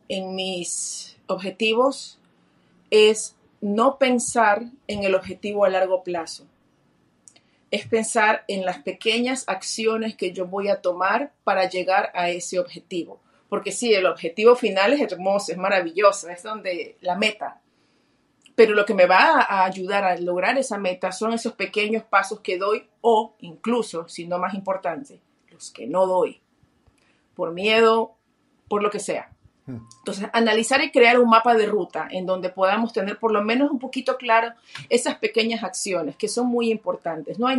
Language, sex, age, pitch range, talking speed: English, female, 40-59, 185-230 Hz, 160 wpm